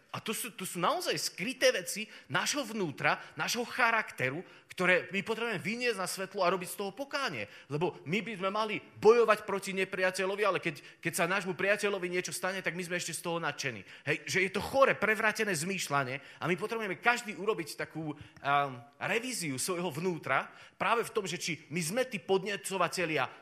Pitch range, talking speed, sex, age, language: 165-205 Hz, 175 wpm, male, 30-49, Slovak